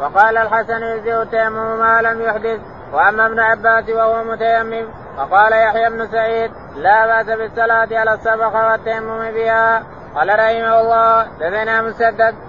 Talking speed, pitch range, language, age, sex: 130 wpm, 220-225 Hz, Arabic, 20-39, male